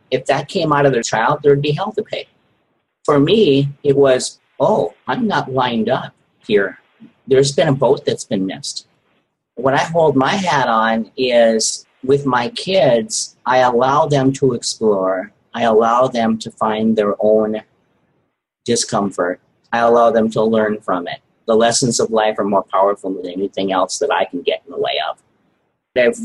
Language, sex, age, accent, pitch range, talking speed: English, male, 40-59, American, 110-140 Hz, 180 wpm